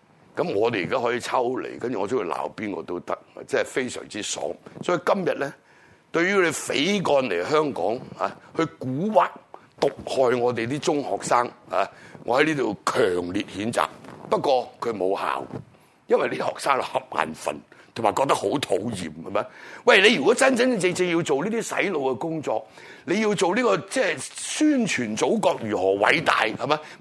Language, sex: Chinese, male